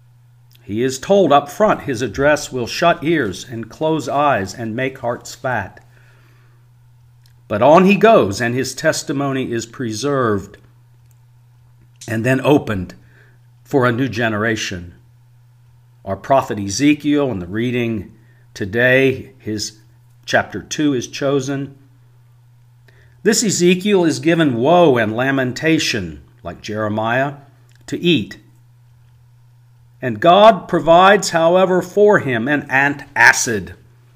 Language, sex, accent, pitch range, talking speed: English, male, American, 120-140 Hz, 110 wpm